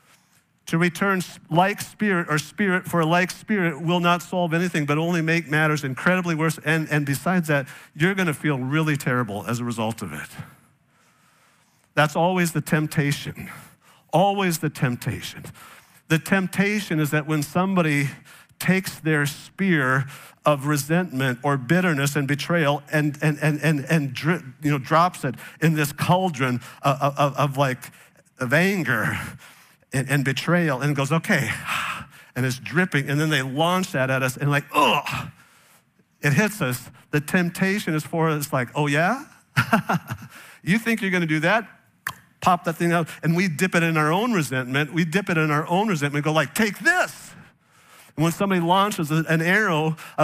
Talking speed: 170 wpm